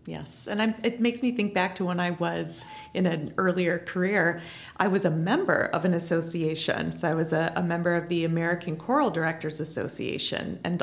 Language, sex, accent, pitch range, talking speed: English, female, American, 170-210 Hz, 195 wpm